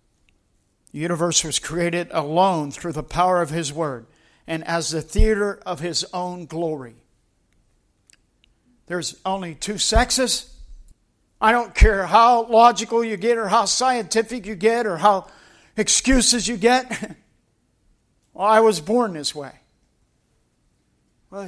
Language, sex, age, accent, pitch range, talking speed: English, male, 50-69, American, 155-210 Hz, 130 wpm